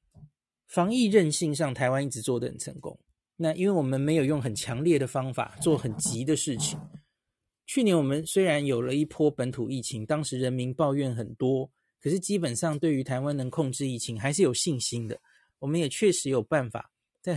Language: Chinese